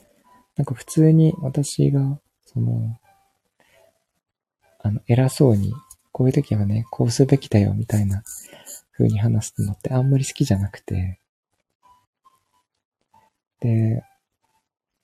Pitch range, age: 105-140 Hz, 20-39